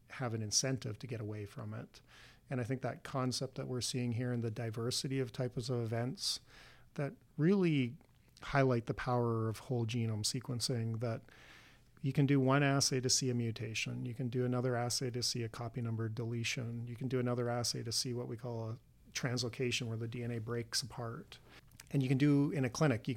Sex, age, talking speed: male, 40-59, 205 wpm